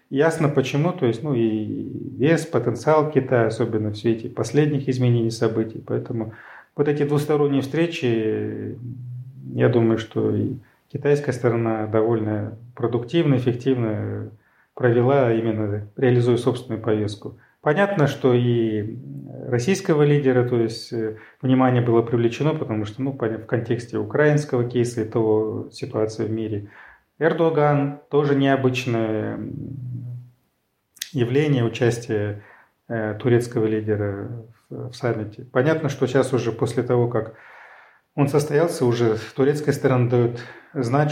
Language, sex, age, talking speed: Russian, male, 30-49, 120 wpm